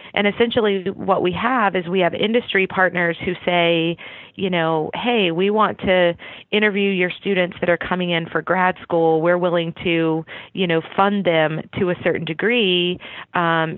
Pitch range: 165-185 Hz